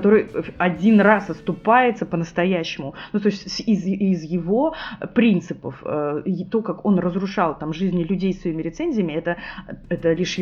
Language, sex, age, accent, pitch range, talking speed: Russian, female, 20-39, native, 165-195 Hz, 145 wpm